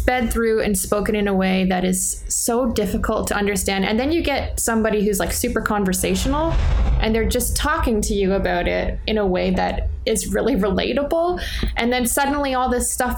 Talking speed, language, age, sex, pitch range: 195 wpm, English, 20-39, female, 190-235 Hz